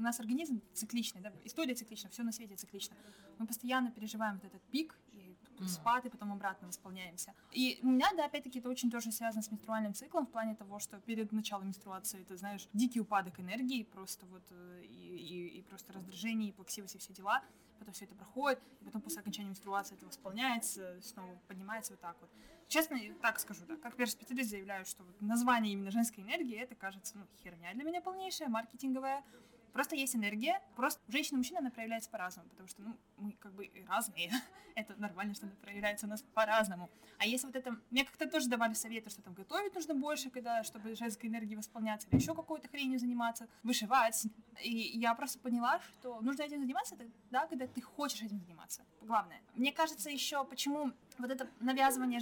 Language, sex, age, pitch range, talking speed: Russian, female, 20-39, 205-255 Hz, 195 wpm